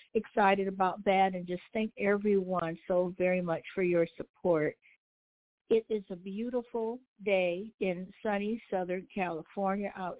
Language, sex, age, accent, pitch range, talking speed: English, female, 60-79, American, 160-200 Hz, 135 wpm